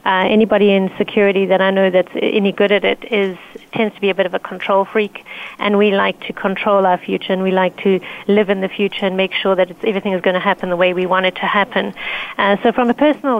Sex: female